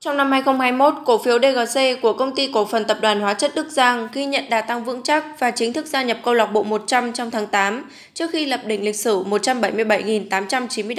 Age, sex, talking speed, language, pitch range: 10-29, female, 230 wpm, Vietnamese, 220-260 Hz